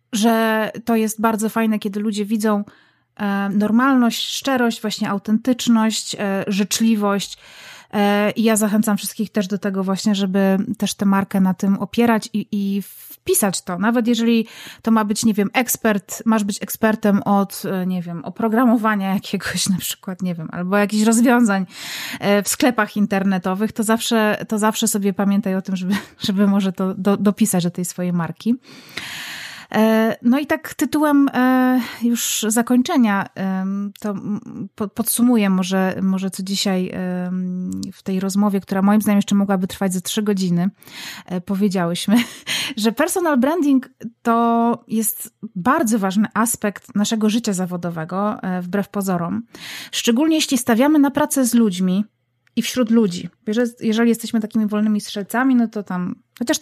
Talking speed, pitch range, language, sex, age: 140 wpm, 195-230 Hz, Polish, female, 30-49